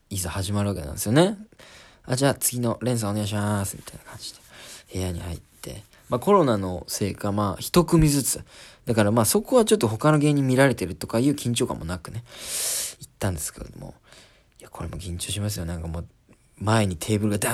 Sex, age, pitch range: male, 20-39, 95-125 Hz